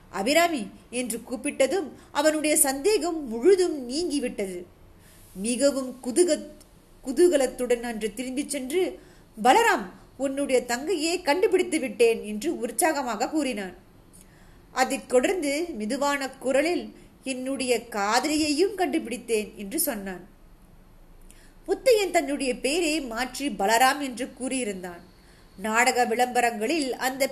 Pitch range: 235-310 Hz